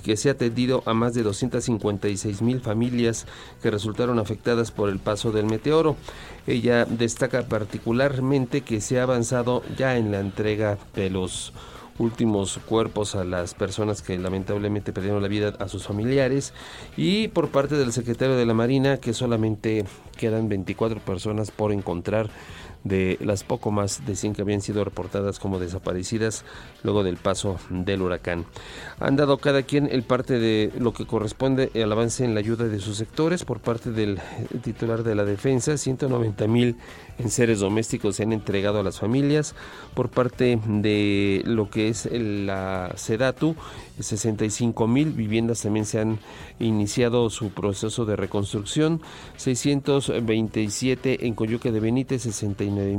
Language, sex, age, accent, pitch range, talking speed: Spanish, male, 40-59, Mexican, 105-125 Hz, 155 wpm